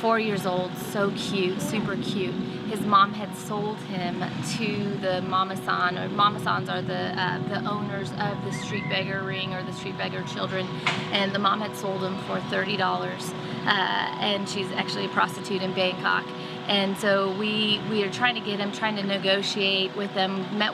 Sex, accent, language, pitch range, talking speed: female, American, English, 185-200 Hz, 180 wpm